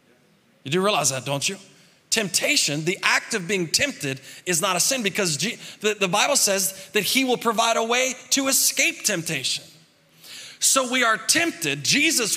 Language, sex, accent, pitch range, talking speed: English, male, American, 145-215 Hz, 170 wpm